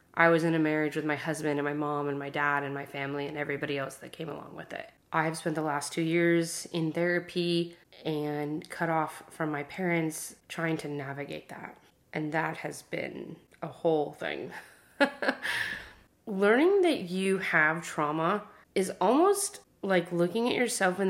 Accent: American